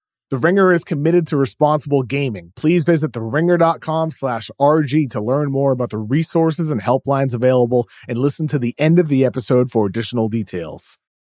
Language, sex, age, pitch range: English, male, 30-49, 130-175 Hz